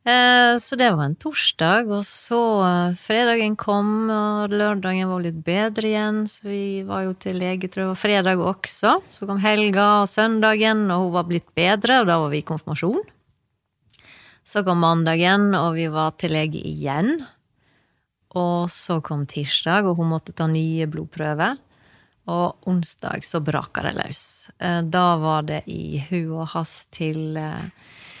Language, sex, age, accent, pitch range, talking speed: English, female, 30-49, Swedish, 155-195 Hz, 155 wpm